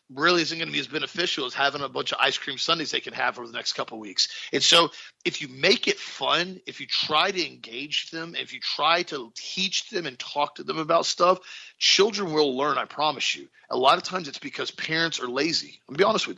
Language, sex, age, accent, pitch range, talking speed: English, male, 40-59, American, 145-215 Hz, 255 wpm